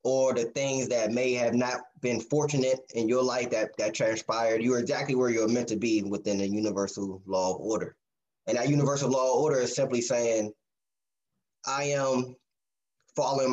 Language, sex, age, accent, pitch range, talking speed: English, male, 20-39, American, 120-155 Hz, 180 wpm